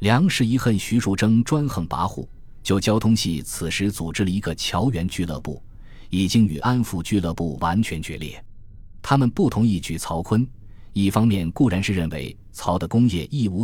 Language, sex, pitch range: Chinese, male, 85-115 Hz